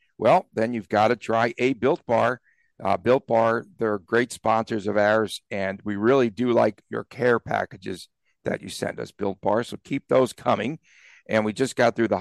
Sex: male